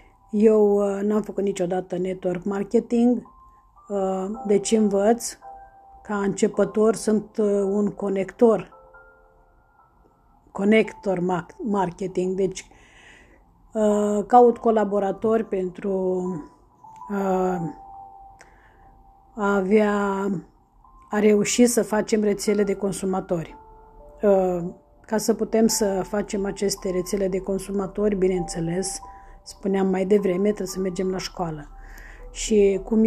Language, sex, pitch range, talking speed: Romanian, female, 190-235 Hz, 95 wpm